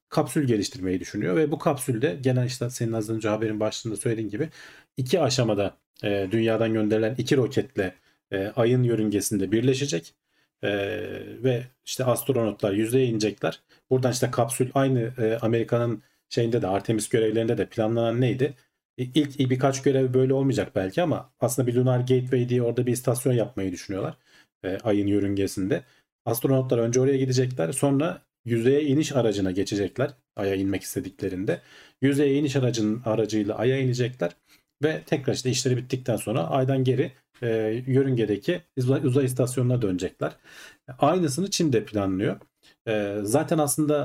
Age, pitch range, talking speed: 40-59, 110-135 Hz, 140 wpm